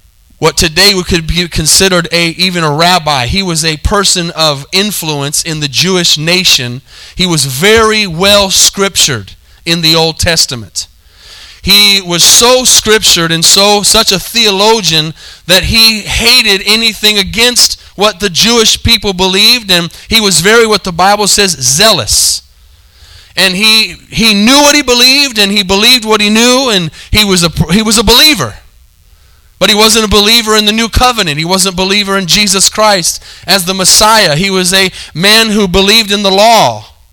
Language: English